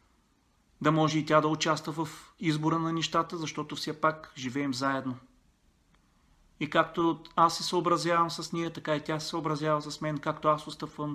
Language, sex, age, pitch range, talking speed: Bulgarian, male, 40-59, 125-175 Hz, 170 wpm